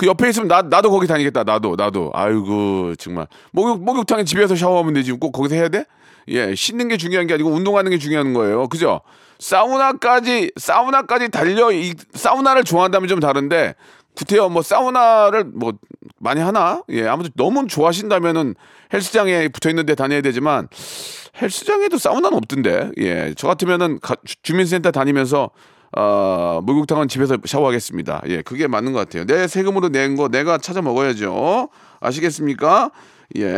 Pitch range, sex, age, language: 130-195 Hz, male, 40-59, Korean